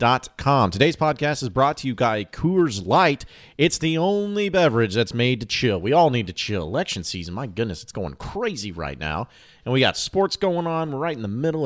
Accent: American